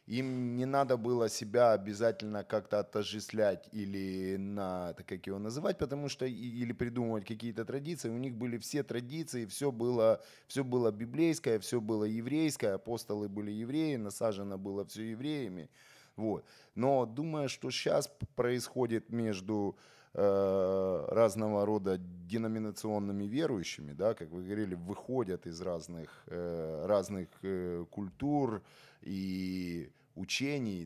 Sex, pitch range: male, 95-125 Hz